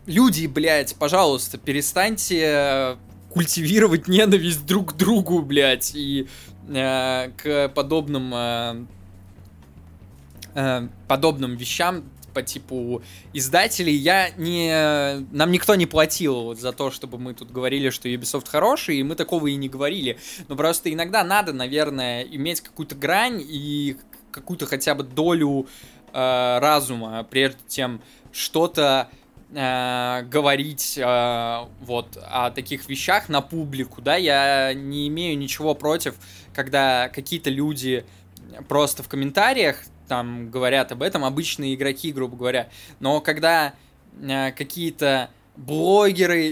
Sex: male